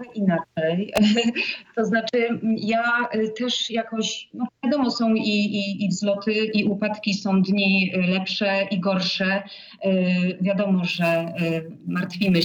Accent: native